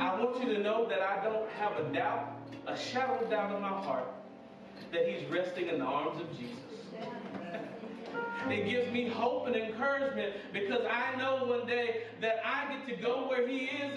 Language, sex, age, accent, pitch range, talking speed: English, male, 40-59, American, 235-285 Hz, 190 wpm